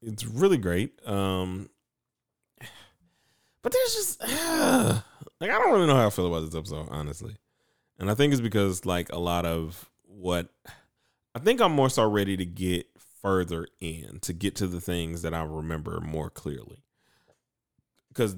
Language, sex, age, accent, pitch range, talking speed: English, male, 30-49, American, 90-120 Hz, 165 wpm